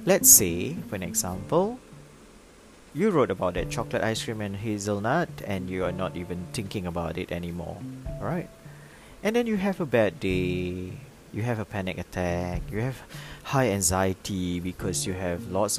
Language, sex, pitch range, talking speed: English, male, 95-150 Hz, 165 wpm